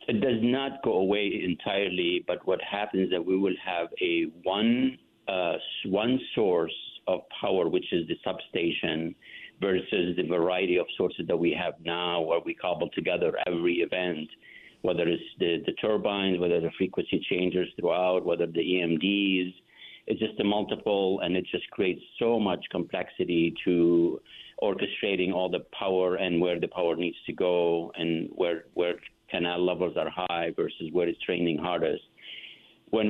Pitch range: 85-105 Hz